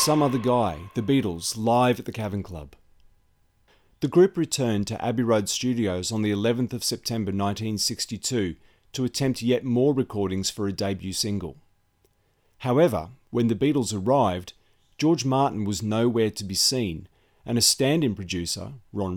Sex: male